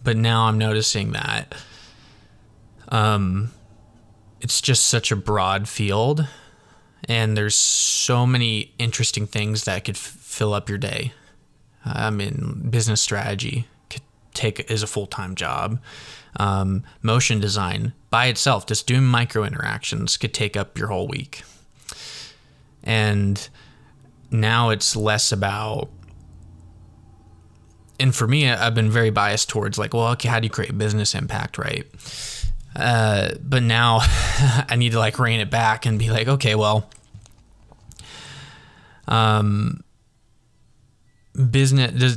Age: 20-39